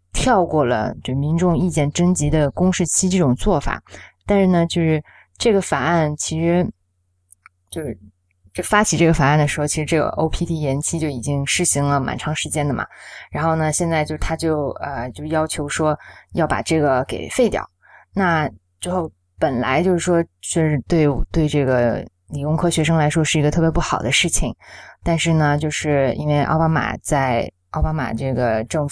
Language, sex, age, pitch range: Chinese, female, 20-39, 130-165 Hz